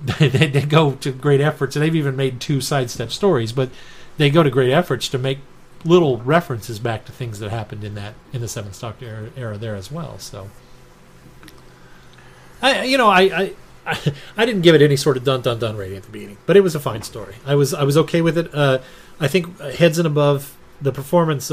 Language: English